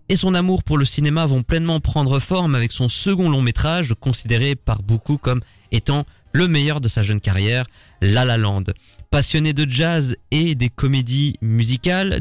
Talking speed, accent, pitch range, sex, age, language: 175 wpm, French, 110-150 Hz, male, 20-39, French